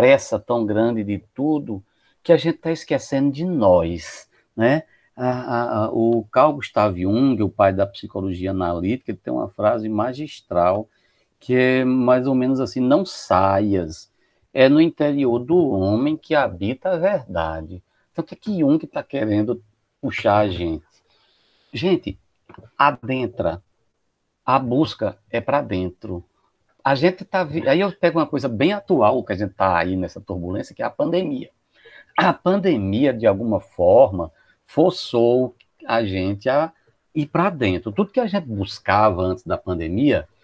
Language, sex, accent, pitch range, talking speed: Portuguese, male, Brazilian, 95-145 Hz, 160 wpm